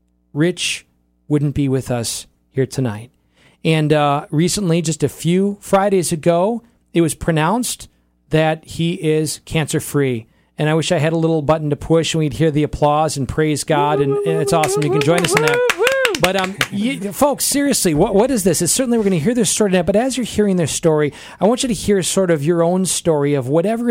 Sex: male